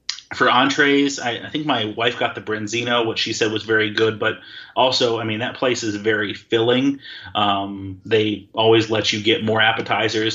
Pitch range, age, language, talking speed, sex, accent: 110-125 Hz, 30-49, English, 190 wpm, male, American